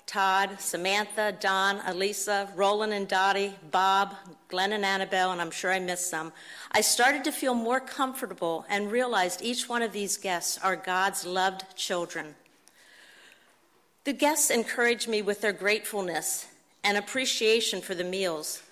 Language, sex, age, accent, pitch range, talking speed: English, female, 50-69, American, 190-240 Hz, 145 wpm